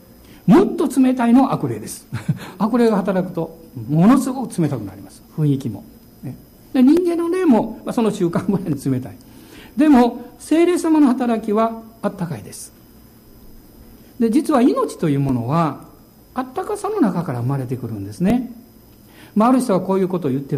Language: Japanese